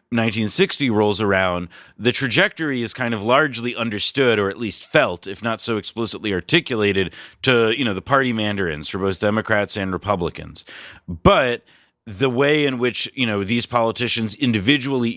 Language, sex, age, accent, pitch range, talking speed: English, male, 30-49, American, 100-120 Hz, 160 wpm